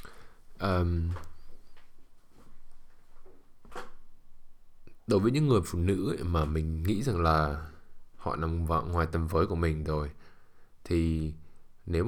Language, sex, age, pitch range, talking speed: English, male, 20-39, 80-100 Hz, 115 wpm